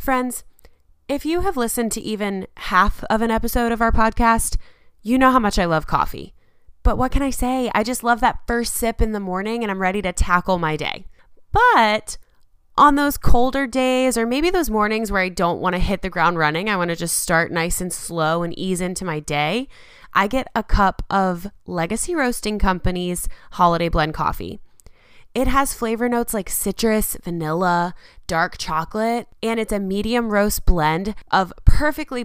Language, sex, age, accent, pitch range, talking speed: English, female, 20-39, American, 175-240 Hz, 190 wpm